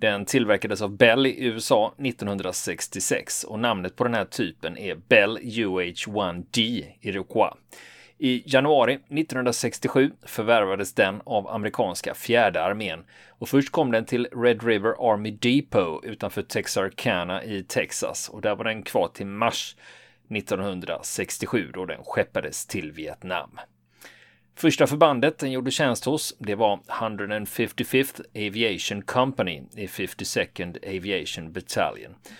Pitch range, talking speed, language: 100-130 Hz, 125 wpm, Swedish